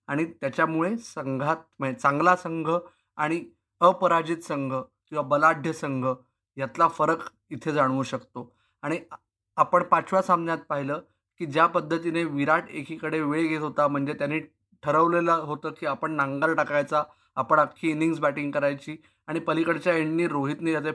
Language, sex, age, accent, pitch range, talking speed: Marathi, male, 20-39, native, 145-170 Hz, 140 wpm